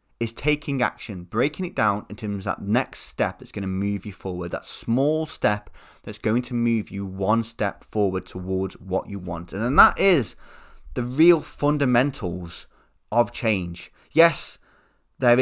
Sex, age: male, 20-39